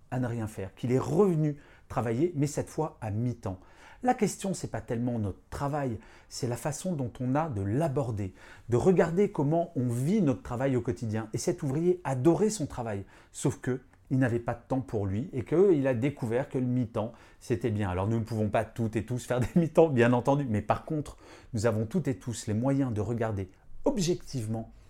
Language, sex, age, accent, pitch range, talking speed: French, male, 40-59, French, 105-155 Hz, 210 wpm